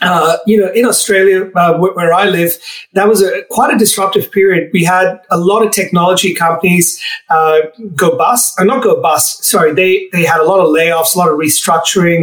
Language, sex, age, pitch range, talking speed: English, male, 30-49, 170-205 Hz, 205 wpm